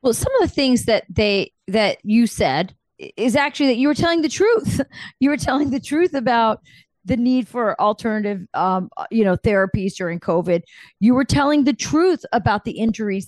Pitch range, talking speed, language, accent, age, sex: 200-255 Hz, 190 wpm, English, American, 40-59, female